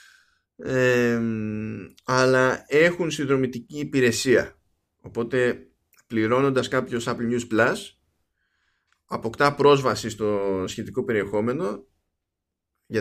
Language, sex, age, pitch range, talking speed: Greek, male, 20-39, 100-130 Hz, 80 wpm